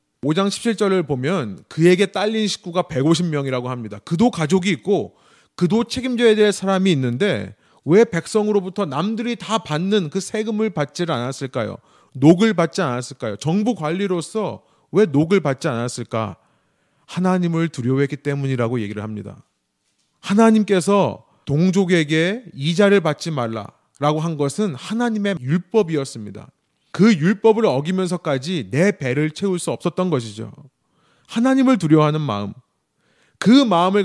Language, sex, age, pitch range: Korean, male, 30-49, 140-200 Hz